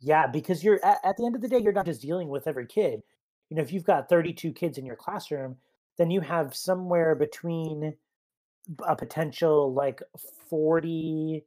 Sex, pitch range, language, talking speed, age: male, 135-180 Hz, English, 185 wpm, 30-49